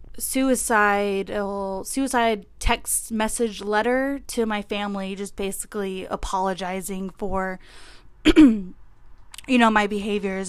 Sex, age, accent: female, 20-39, American